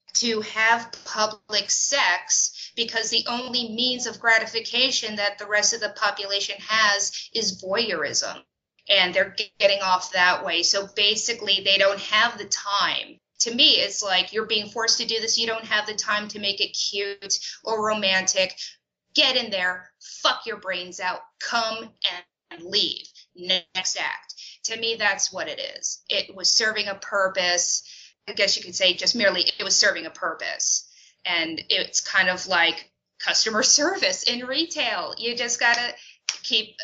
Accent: American